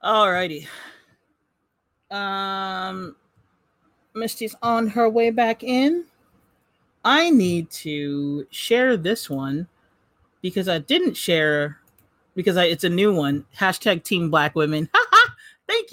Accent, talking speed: American, 115 wpm